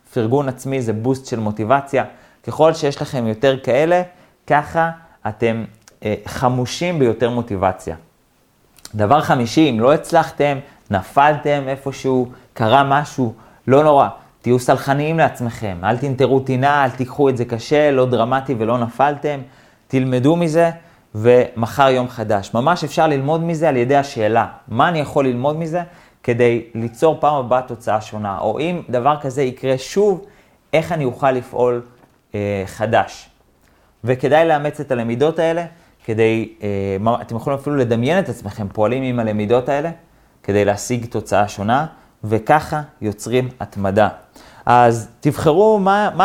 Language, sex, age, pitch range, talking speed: Hebrew, male, 30-49, 110-145 Hz, 135 wpm